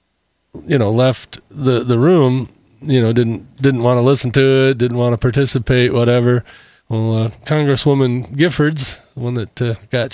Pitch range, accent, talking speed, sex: 115-140 Hz, American, 170 wpm, male